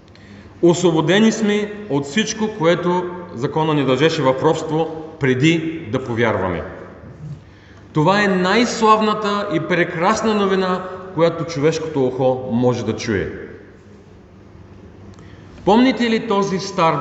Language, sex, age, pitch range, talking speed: Bulgarian, male, 40-59, 110-175 Hz, 100 wpm